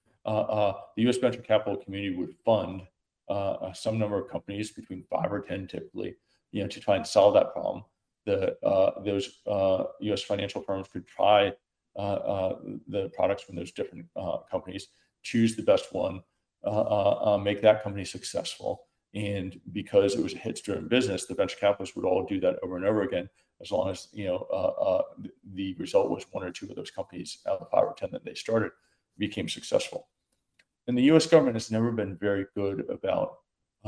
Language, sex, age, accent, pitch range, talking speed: English, male, 40-59, American, 95-115 Hz, 200 wpm